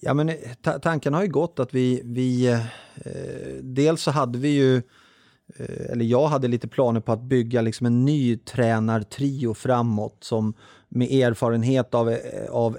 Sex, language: male, Swedish